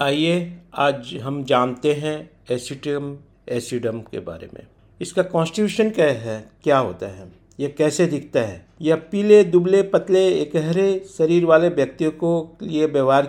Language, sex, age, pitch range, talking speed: Hindi, male, 50-69, 135-165 Hz, 145 wpm